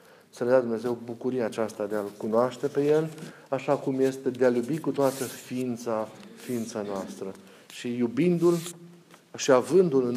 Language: Romanian